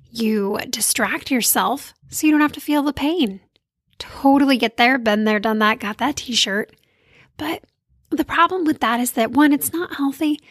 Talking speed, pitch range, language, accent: 185 wpm, 220-280 Hz, English, American